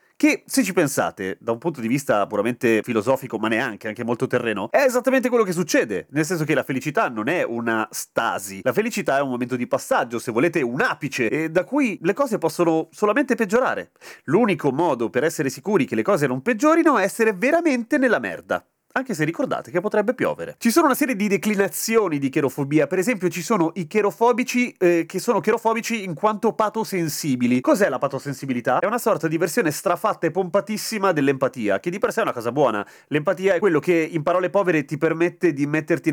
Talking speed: 205 wpm